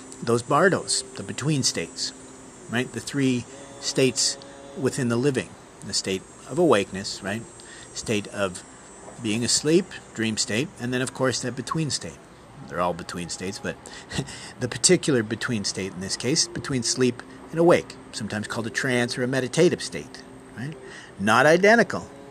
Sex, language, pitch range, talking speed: male, English, 105-140 Hz, 145 wpm